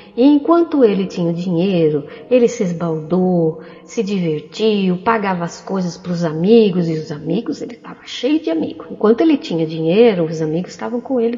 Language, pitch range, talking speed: Portuguese, 175-245 Hz, 170 wpm